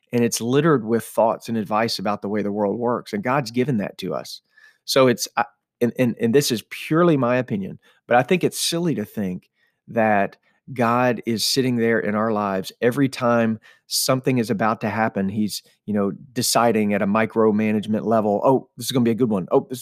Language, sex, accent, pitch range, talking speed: English, male, American, 110-125 Hz, 210 wpm